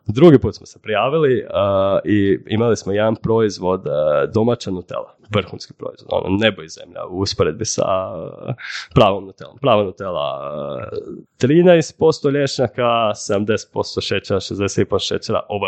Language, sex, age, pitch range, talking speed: Croatian, male, 20-39, 100-135 Hz, 135 wpm